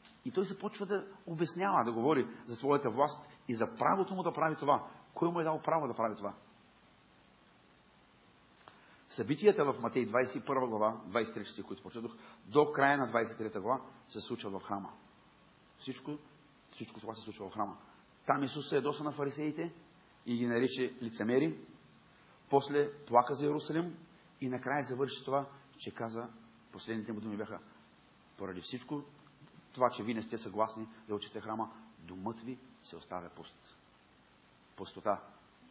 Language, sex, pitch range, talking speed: Bulgarian, male, 110-145 Hz, 155 wpm